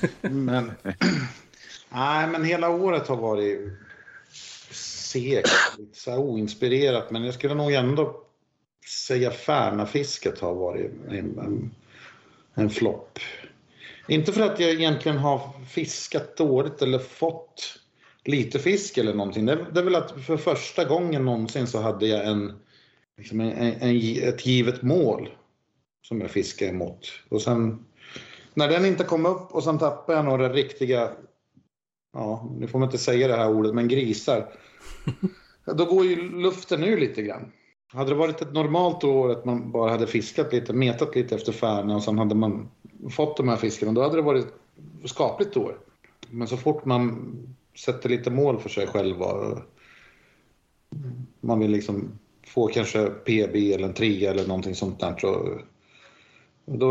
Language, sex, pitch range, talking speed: Swedish, male, 110-150 Hz, 155 wpm